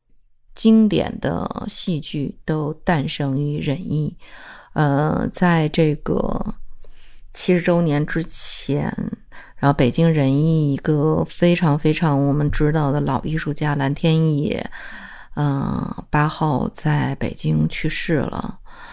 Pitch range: 145-185 Hz